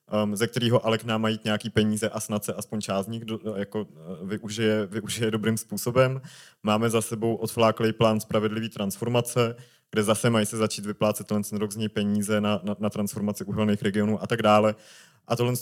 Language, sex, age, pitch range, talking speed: Czech, male, 20-39, 105-120 Hz, 170 wpm